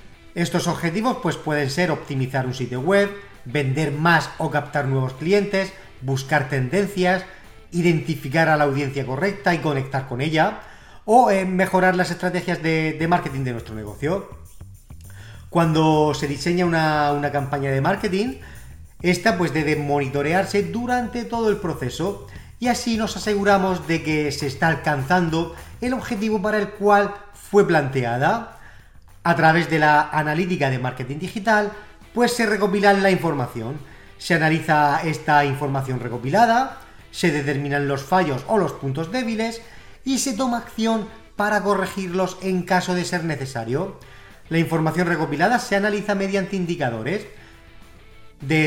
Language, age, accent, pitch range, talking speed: Spanish, 30-49, Spanish, 140-195 Hz, 140 wpm